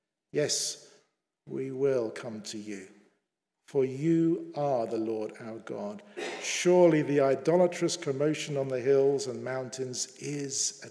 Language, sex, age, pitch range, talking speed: English, male, 50-69, 130-175 Hz, 130 wpm